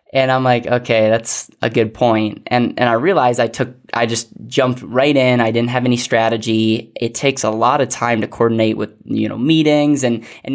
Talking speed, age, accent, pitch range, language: 215 wpm, 10-29, American, 110-130 Hz, English